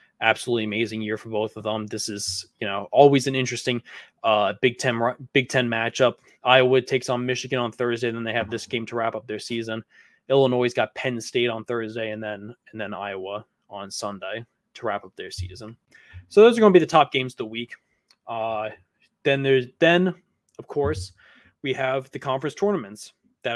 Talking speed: 205 wpm